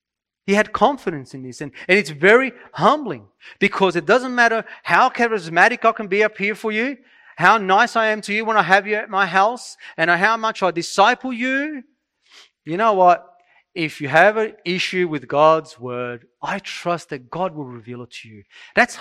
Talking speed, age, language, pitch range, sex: 200 wpm, 30-49, English, 155-205 Hz, male